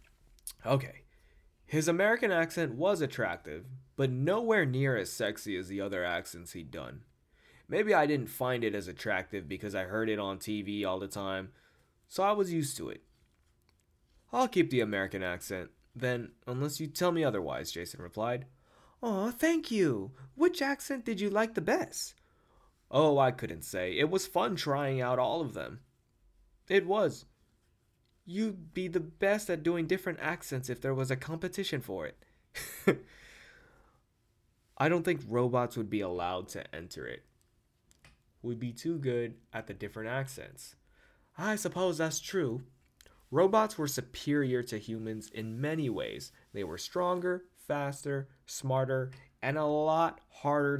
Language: English